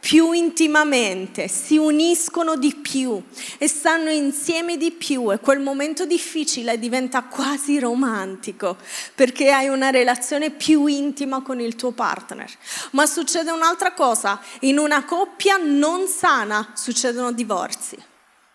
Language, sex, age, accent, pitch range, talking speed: Italian, female, 20-39, native, 235-310 Hz, 125 wpm